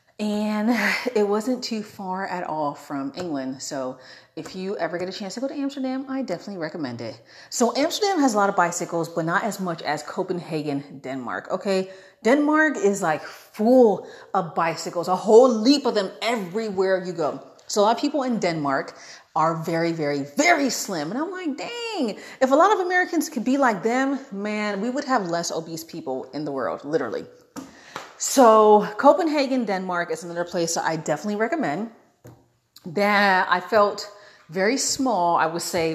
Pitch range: 160-230 Hz